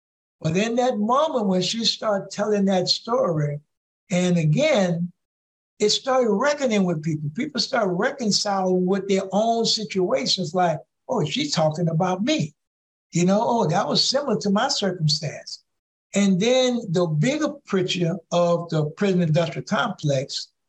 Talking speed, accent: 140 wpm, American